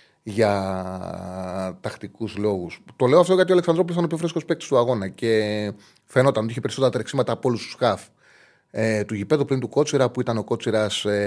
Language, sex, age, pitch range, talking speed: Greek, male, 30-49, 105-140 Hz, 190 wpm